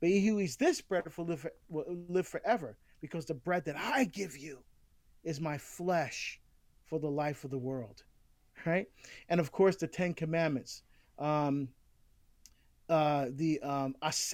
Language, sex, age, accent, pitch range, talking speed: English, male, 40-59, American, 150-195 Hz, 145 wpm